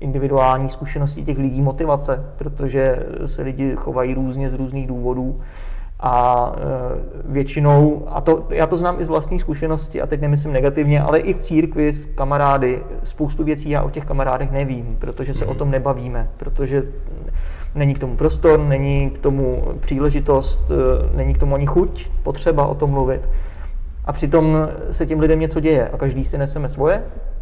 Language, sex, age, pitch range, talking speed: Czech, male, 20-39, 130-145 Hz, 165 wpm